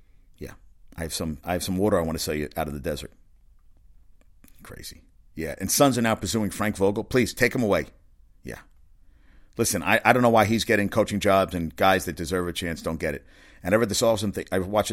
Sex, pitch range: male, 85-110 Hz